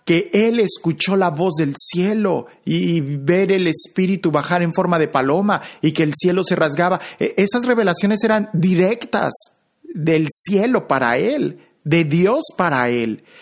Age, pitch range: 40-59, 150-205 Hz